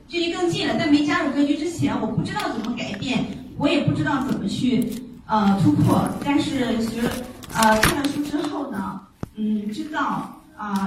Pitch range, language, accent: 220-280 Hz, Chinese, native